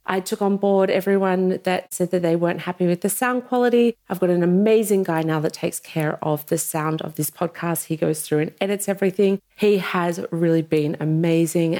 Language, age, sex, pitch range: English, 30-49, female, 160-195 Hz